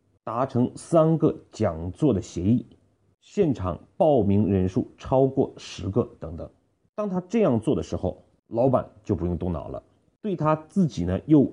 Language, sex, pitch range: Chinese, male, 90-130 Hz